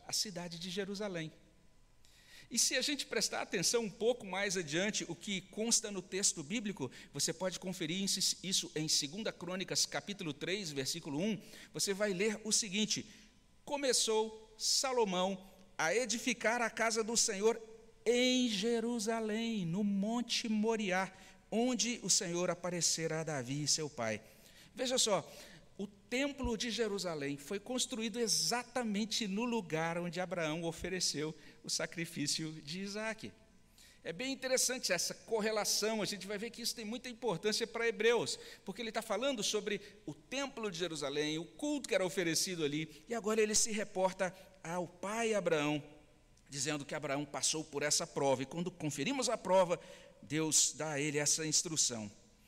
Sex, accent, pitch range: male, Brazilian, 160-225 Hz